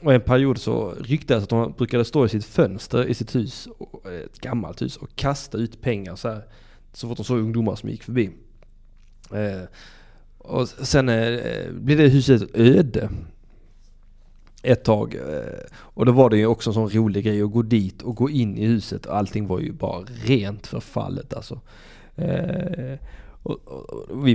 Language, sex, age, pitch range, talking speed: Swedish, male, 20-39, 110-130 Hz, 180 wpm